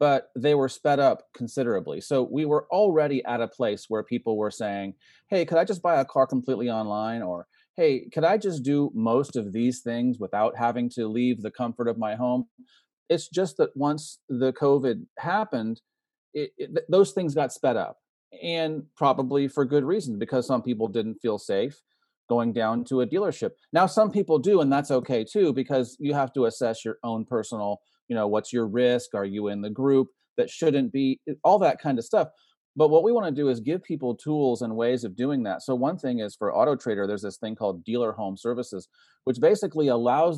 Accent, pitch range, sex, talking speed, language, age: American, 120-155 Hz, male, 205 wpm, English, 30-49